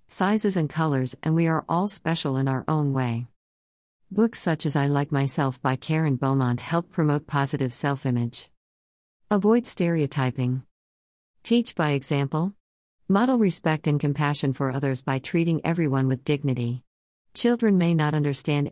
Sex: female